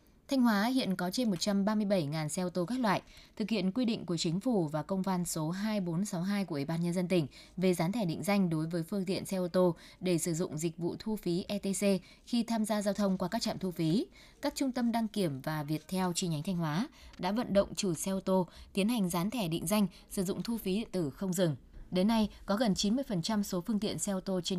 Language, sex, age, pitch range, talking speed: Vietnamese, female, 20-39, 175-210 Hz, 255 wpm